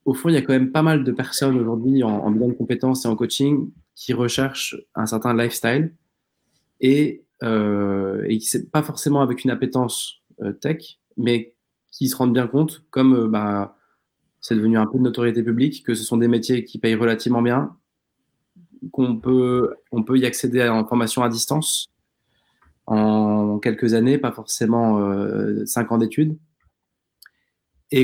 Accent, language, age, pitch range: French, French, 20-39, 110-130 Hz